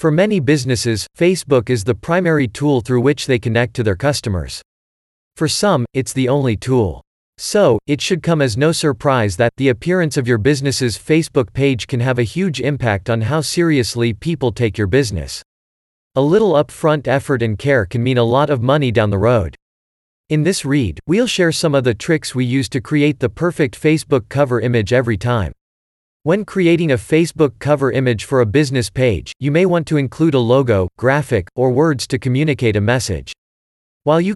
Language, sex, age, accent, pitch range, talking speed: English, male, 40-59, American, 115-150 Hz, 190 wpm